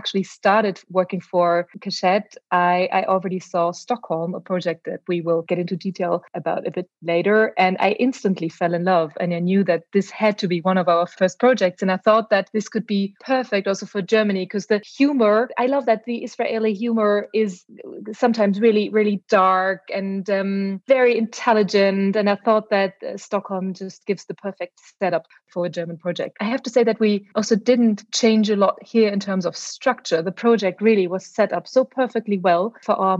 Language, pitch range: English, 185-220 Hz